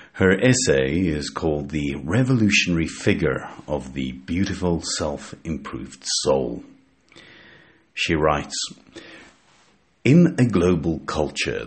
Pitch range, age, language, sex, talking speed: 75-100 Hz, 50-69, English, male, 95 wpm